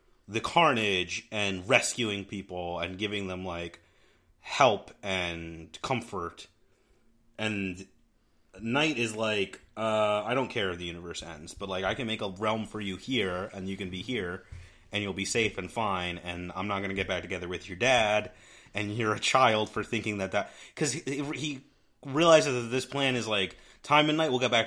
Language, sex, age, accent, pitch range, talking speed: English, male, 30-49, American, 95-125 Hz, 190 wpm